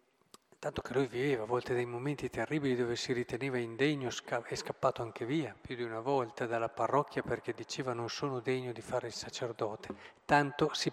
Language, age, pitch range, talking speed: Italian, 40-59, 120-155 Hz, 190 wpm